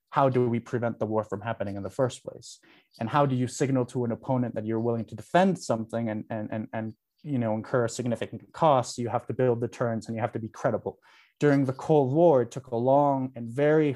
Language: English